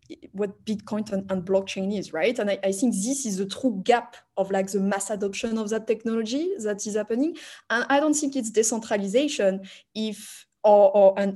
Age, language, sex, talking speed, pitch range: 20-39, English, female, 195 wpm, 200-235 Hz